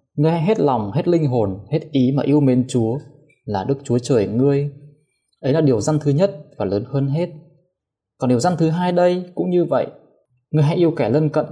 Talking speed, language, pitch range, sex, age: 225 wpm, Vietnamese, 125-155 Hz, male, 20-39